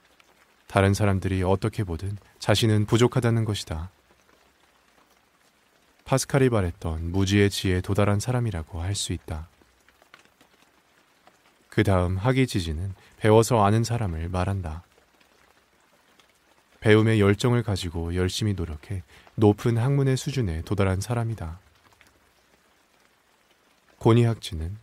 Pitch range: 90-115 Hz